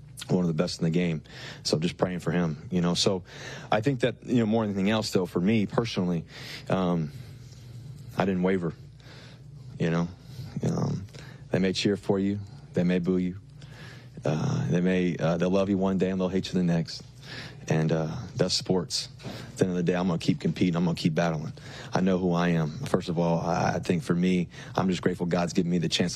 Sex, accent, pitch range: male, American, 85-110 Hz